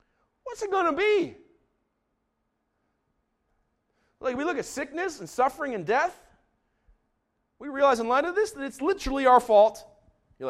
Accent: American